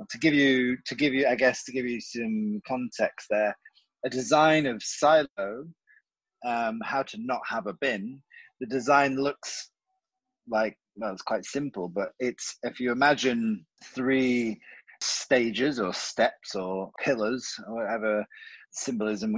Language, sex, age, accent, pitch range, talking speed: English, male, 30-49, British, 110-140 Hz, 150 wpm